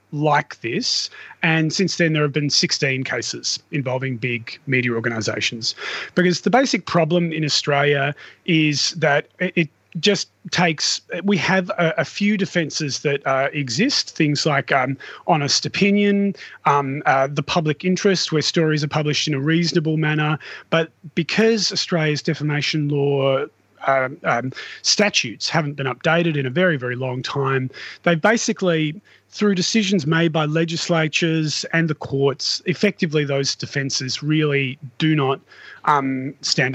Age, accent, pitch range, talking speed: 30-49, Australian, 140-170 Hz, 140 wpm